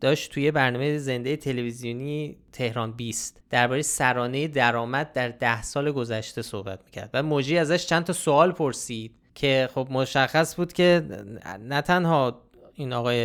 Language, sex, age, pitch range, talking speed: Persian, male, 20-39, 120-155 Hz, 145 wpm